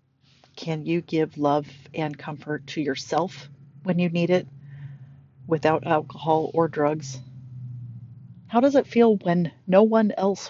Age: 40-59